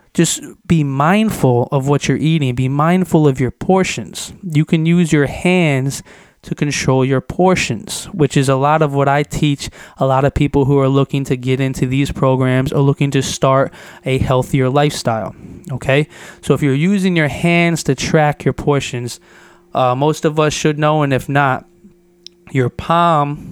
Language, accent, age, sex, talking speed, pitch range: English, American, 20-39, male, 180 wpm, 135-160 Hz